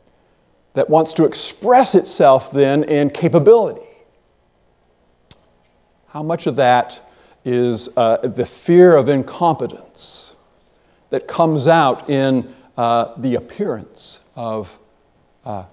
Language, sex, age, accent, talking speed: English, male, 50-69, American, 105 wpm